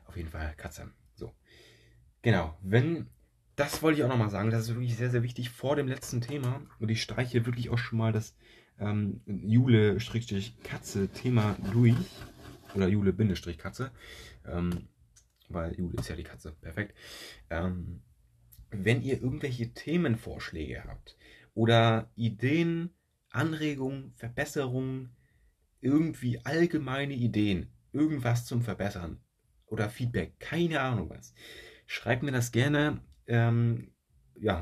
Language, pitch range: German, 95-120 Hz